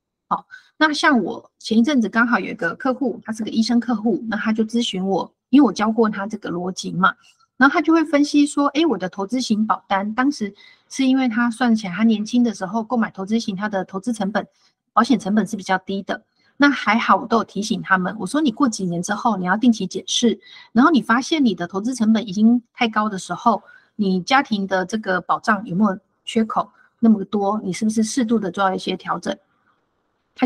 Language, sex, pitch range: Chinese, female, 190-240 Hz